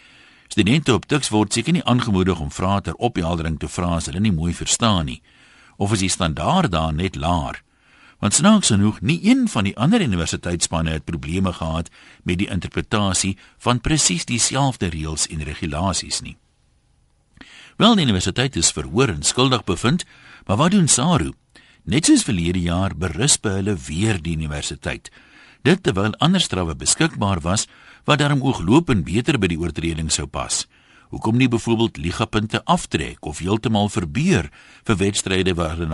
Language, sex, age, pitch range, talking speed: Dutch, male, 60-79, 85-120 Hz, 160 wpm